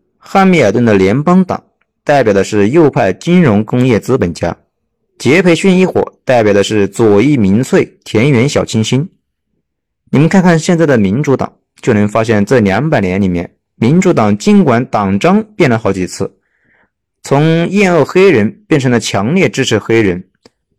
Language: Chinese